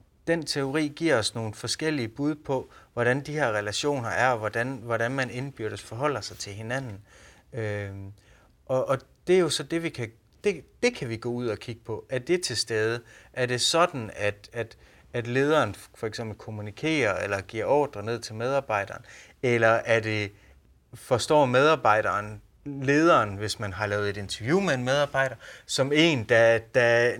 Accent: native